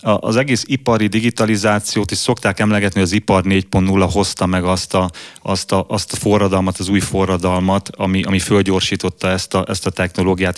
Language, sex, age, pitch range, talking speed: English, male, 30-49, 95-110 Hz, 175 wpm